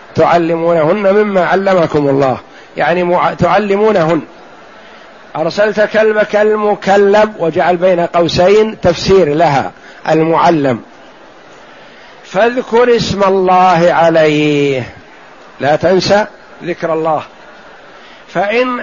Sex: male